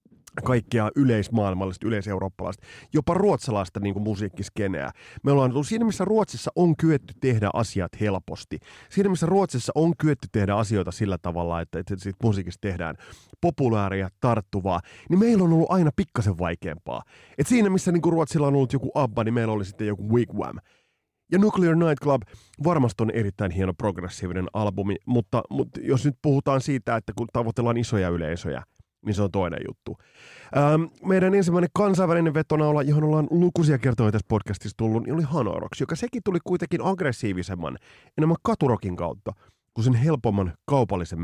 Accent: native